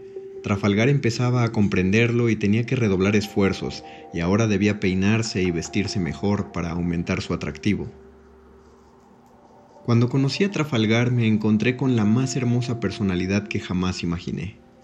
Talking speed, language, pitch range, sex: 140 wpm, Spanish, 95-125 Hz, male